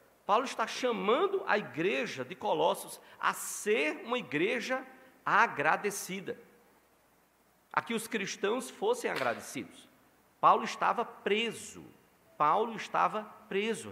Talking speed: 105 wpm